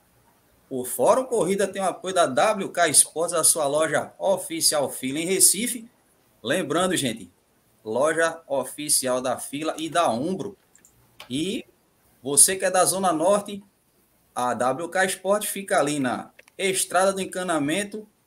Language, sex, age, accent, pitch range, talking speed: Portuguese, male, 20-39, Brazilian, 135-190 Hz, 135 wpm